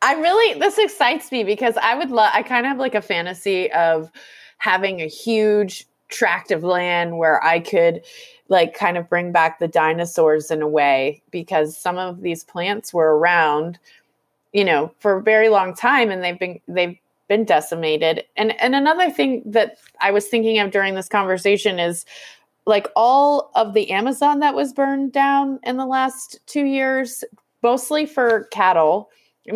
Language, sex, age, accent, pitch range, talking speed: English, female, 20-39, American, 175-235 Hz, 175 wpm